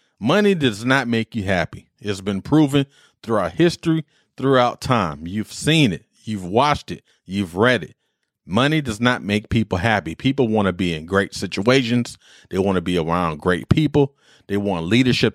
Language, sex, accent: English, male, American